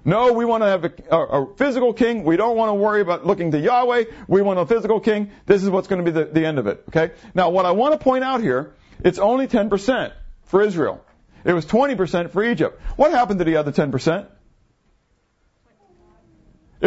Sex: male